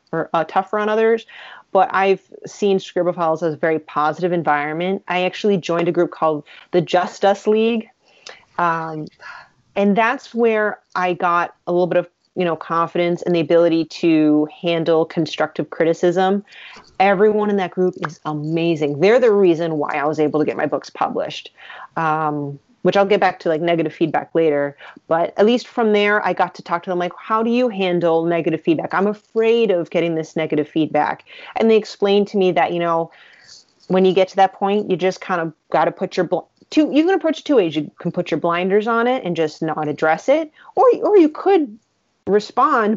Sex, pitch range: female, 165-205 Hz